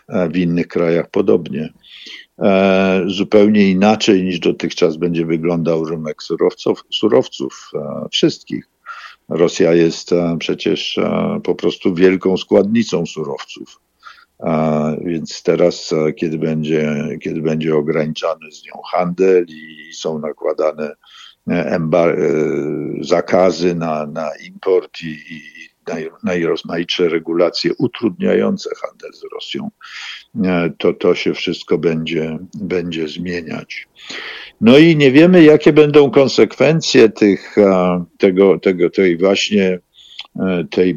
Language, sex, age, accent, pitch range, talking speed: Polish, male, 50-69, native, 80-100 Hz, 95 wpm